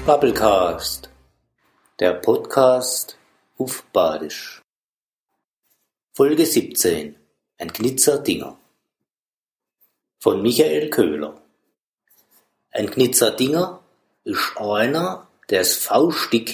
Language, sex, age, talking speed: German, male, 50-69, 75 wpm